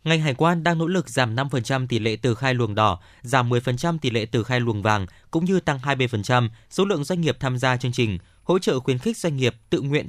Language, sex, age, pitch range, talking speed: Vietnamese, male, 20-39, 115-155 Hz, 250 wpm